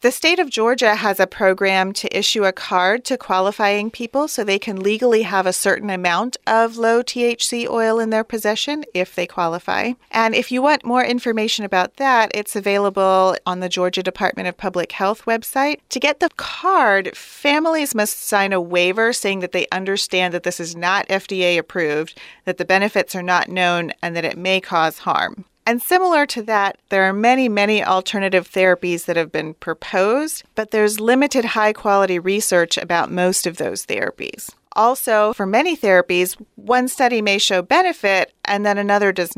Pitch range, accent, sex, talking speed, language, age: 185-230 Hz, American, female, 180 wpm, English, 40-59